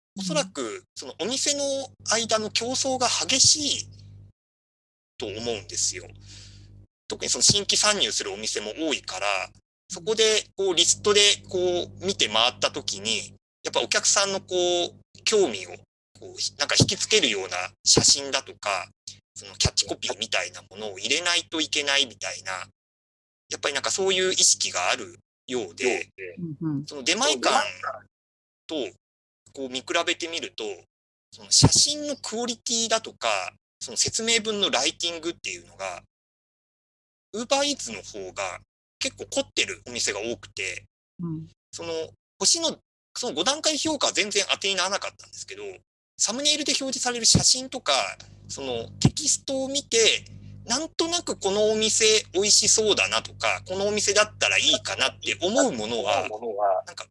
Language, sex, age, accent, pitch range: Japanese, male, 30-49, native, 165-270 Hz